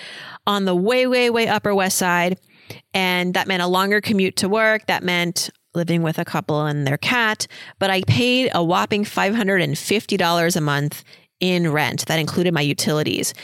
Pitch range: 170-215 Hz